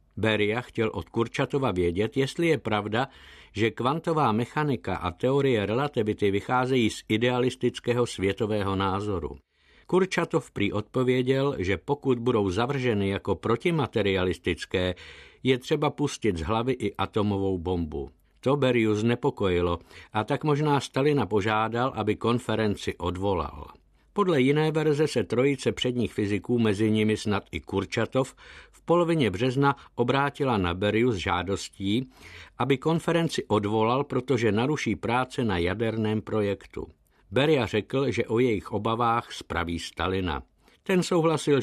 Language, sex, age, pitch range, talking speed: Czech, male, 50-69, 100-130 Hz, 125 wpm